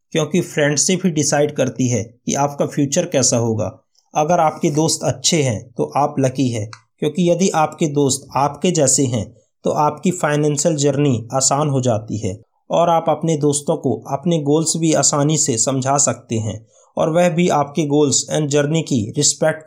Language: Hindi